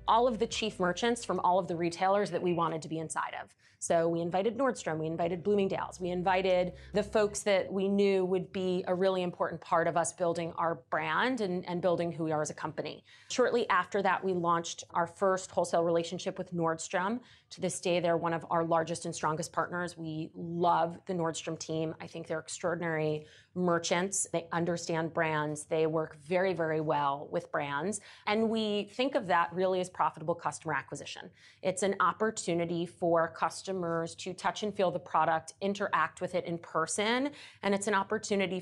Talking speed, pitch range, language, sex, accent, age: 190 wpm, 165-195 Hz, English, female, American, 30-49